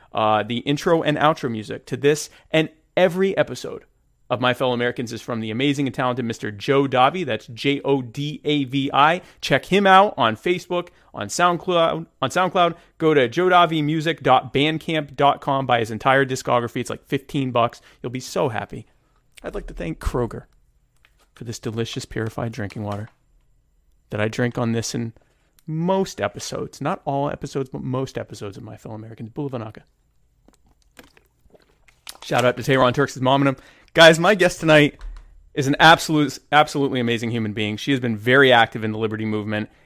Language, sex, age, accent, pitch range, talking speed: English, male, 30-49, American, 115-150 Hz, 165 wpm